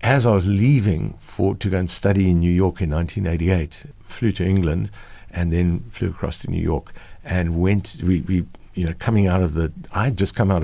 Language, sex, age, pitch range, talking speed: English, male, 60-79, 90-105 Hz, 220 wpm